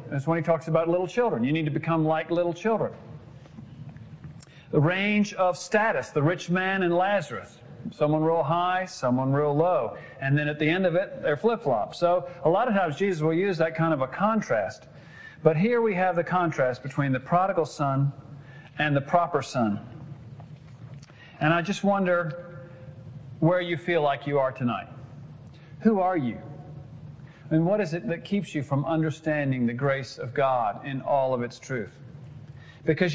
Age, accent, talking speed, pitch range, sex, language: 40-59, American, 180 wpm, 140-175 Hz, male, English